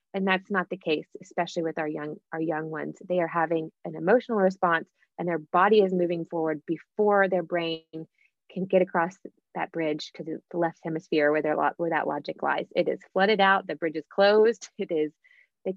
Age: 20-39